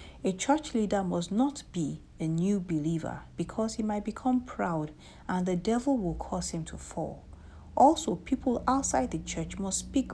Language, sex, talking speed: English, female, 170 wpm